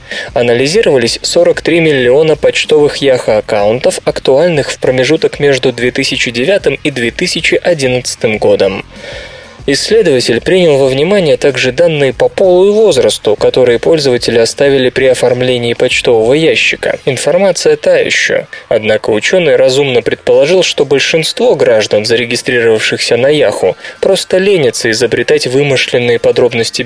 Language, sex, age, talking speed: Russian, male, 20-39, 105 wpm